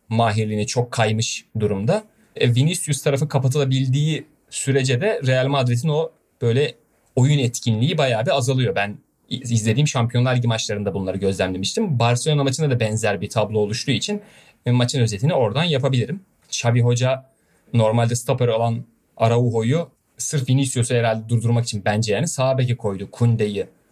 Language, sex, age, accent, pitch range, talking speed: Turkish, male, 30-49, native, 115-145 Hz, 135 wpm